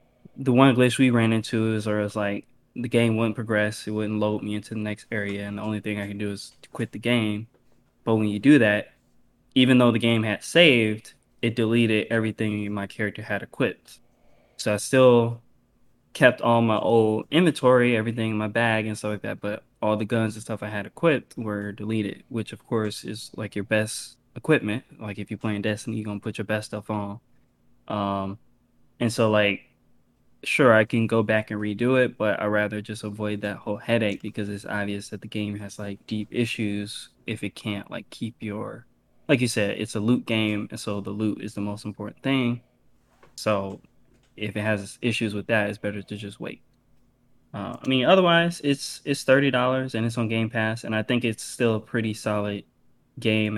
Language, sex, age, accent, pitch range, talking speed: English, male, 20-39, American, 105-120 Hz, 210 wpm